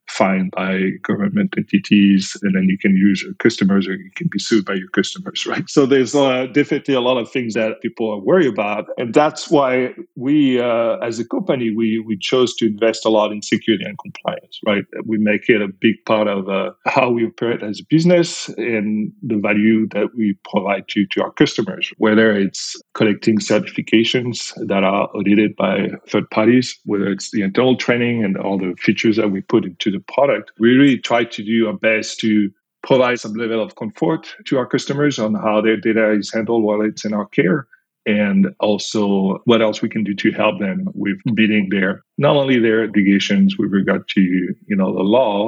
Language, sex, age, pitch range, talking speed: English, male, 40-59, 100-125 Hz, 200 wpm